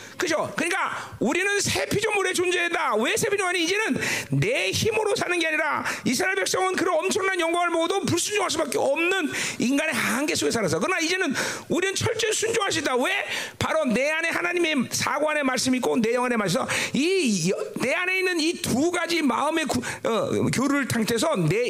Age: 40-59